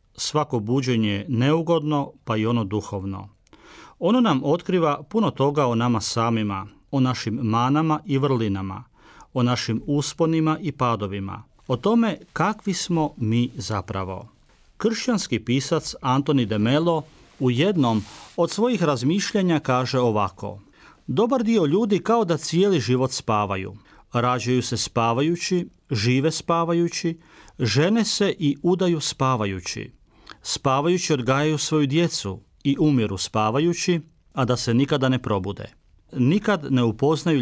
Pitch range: 110-160 Hz